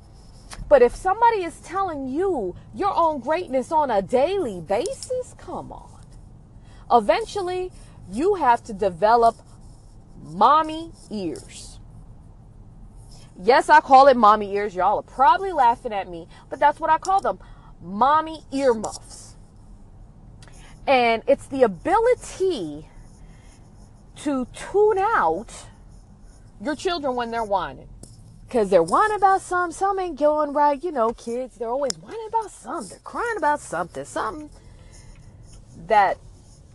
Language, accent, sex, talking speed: English, American, female, 125 wpm